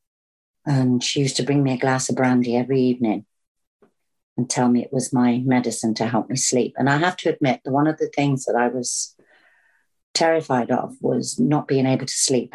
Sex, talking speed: female, 210 wpm